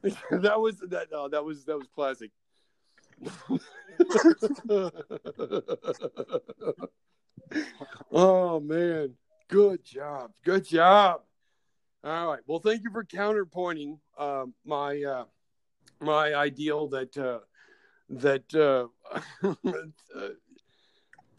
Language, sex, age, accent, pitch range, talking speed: English, male, 50-69, American, 130-205 Hz, 85 wpm